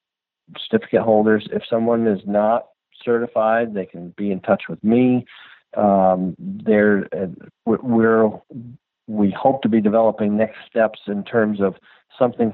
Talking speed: 135 wpm